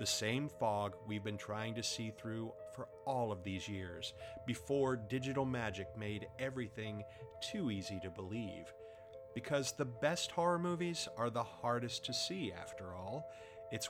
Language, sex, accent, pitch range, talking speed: English, male, American, 100-130 Hz, 155 wpm